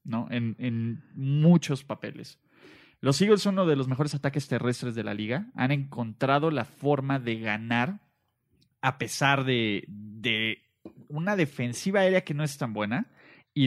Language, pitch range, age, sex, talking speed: Spanish, 120-150 Hz, 30-49, male, 160 wpm